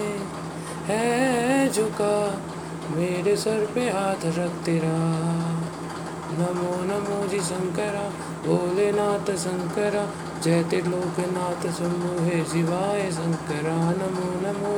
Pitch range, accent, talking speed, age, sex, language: 170-245 Hz, native, 85 wpm, 20-39, male, Hindi